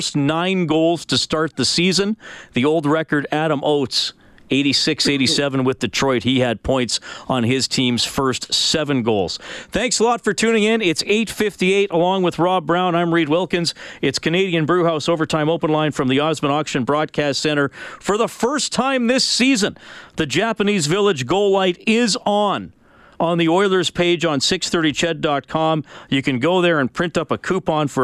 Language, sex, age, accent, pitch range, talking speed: English, male, 40-59, American, 135-190 Hz, 170 wpm